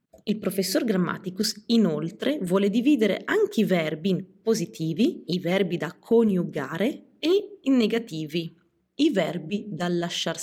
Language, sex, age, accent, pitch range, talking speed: Italian, female, 30-49, native, 170-230 Hz, 125 wpm